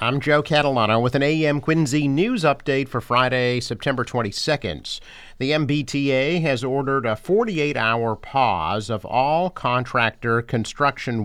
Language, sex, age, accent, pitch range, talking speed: English, male, 50-69, American, 105-130 Hz, 130 wpm